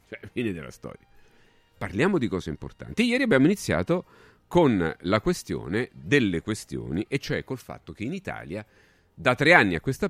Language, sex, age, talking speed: Italian, male, 40-59, 165 wpm